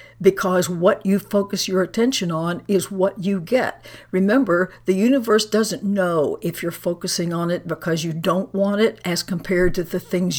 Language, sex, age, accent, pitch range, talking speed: English, female, 60-79, American, 170-210 Hz, 180 wpm